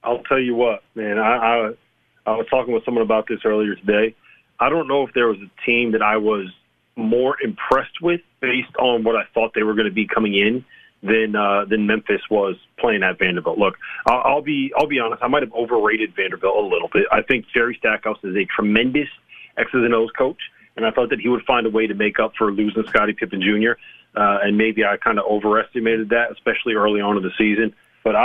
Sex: male